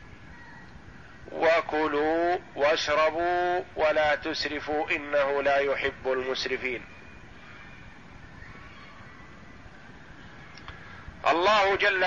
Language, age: Arabic, 50-69